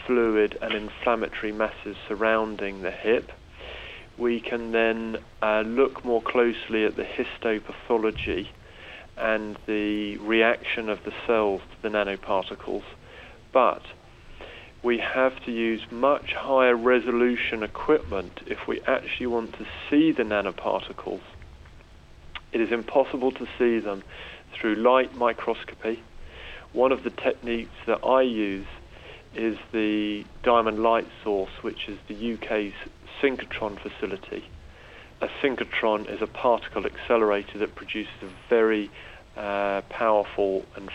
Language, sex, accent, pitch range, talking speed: English, male, British, 105-115 Hz, 120 wpm